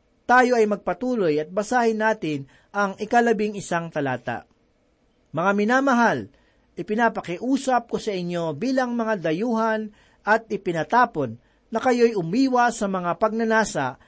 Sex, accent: male, native